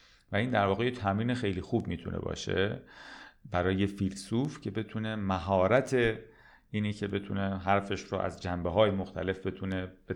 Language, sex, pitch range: Persian, male, 90-110 Hz